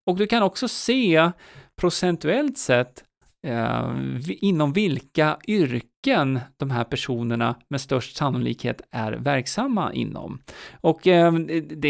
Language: Swedish